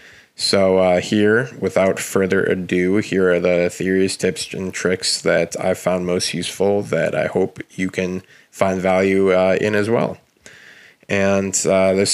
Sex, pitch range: male, 90-100 Hz